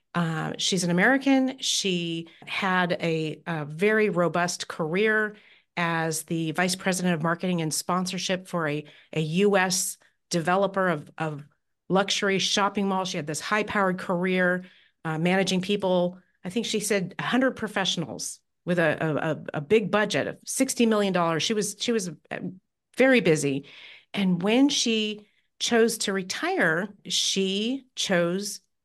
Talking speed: 145 wpm